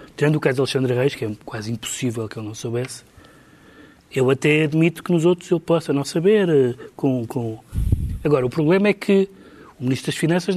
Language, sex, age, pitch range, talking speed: Portuguese, male, 30-49, 130-170 Hz, 200 wpm